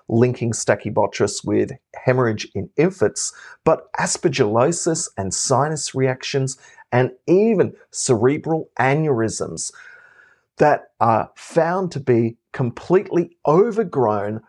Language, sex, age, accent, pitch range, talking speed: English, male, 30-49, Australian, 120-175 Hz, 90 wpm